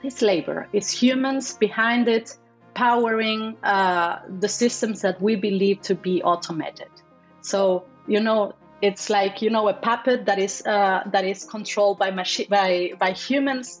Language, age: Italian, 30-49